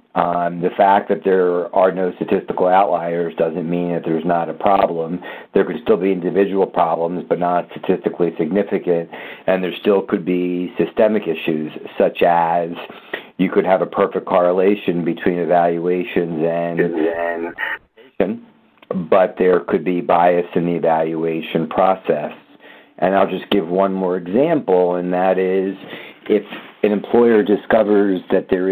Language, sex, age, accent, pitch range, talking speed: English, male, 50-69, American, 85-95 Hz, 145 wpm